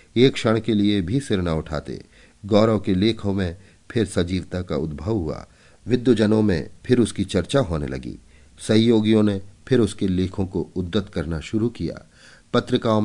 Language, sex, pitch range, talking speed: Hindi, male, 85-115 Hz, 160 wpm